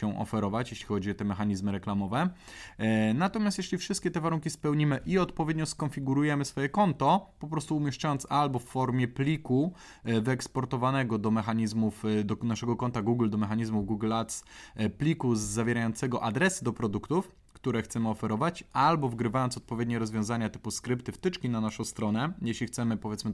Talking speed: 145 wpm